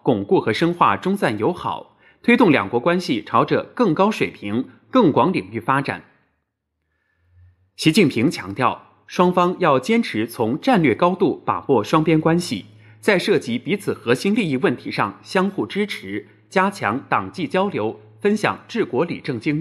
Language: Chinese